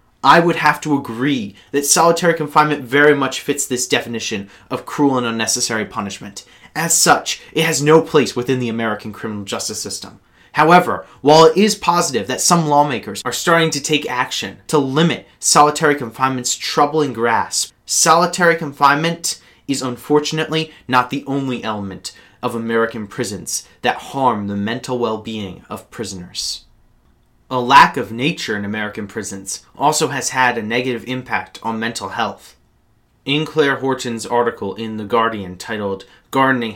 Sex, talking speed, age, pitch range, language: male, 150 wpm, 30-49, 115-150 Hz, English